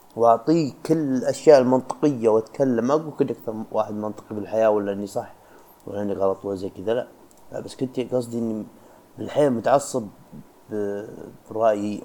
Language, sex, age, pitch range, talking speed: Arabic, male, 30-49, 110-140 Hz, 140 wpm